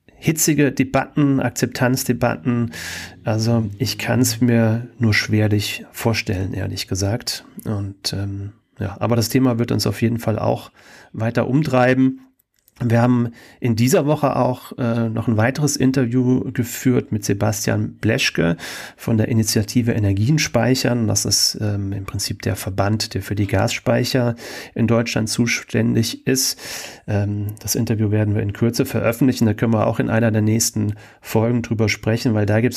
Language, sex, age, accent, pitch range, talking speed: German, male, 40-59, German, 105-120 Hz, 155 wpm